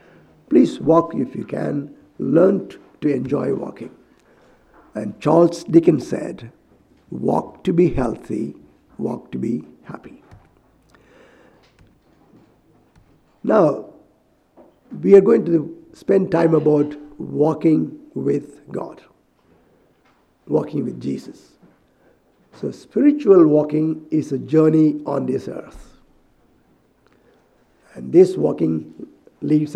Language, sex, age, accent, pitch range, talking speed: English, male, 50-69, Indian, 150-185 Hz, 95 wpm